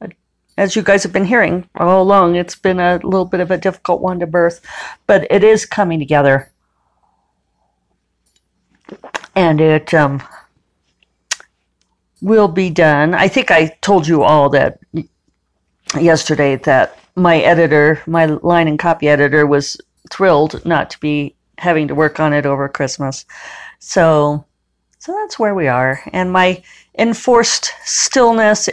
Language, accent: English, American